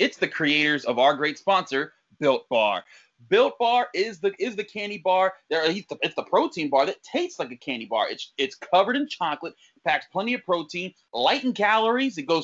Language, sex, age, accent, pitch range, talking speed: English, male, 30-49, American, 155-205 Hz, 205 wpm